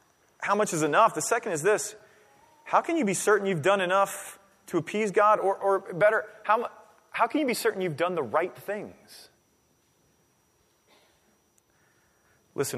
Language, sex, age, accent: English, male, 30-49, American